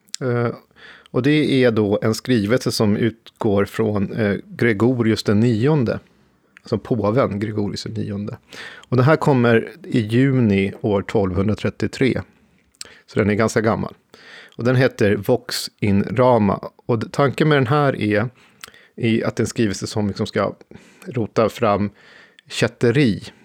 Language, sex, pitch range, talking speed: Swedish, male, 105-125 Hz, 140 wpm